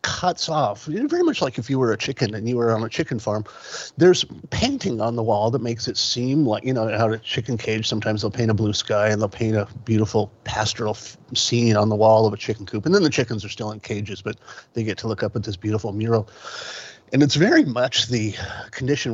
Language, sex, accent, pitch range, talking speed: English, male, American, 105-125 Hz, 240 wpm